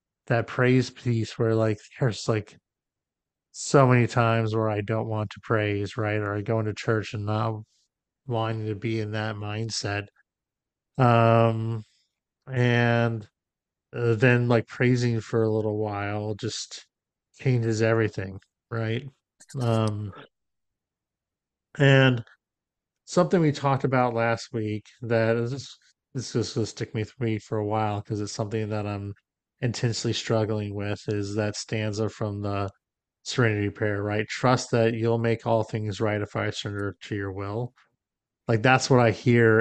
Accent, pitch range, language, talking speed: American, 105-120 Hz, English, 150 wpm